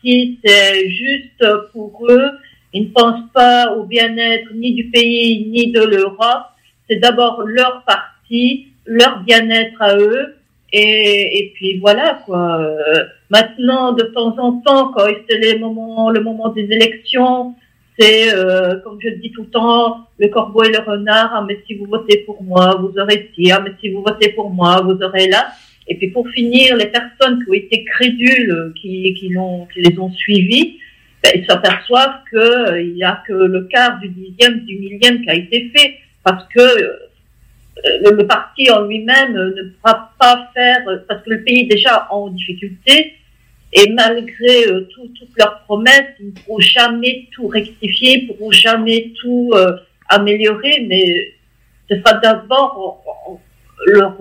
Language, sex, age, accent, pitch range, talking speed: French, female, 40-59, French, 200-245 Hz, 165 wpm